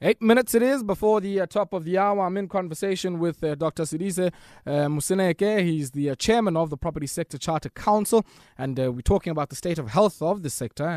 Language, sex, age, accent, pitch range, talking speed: English, male, 20-39, South African, 135-170 Hz, 230 wpm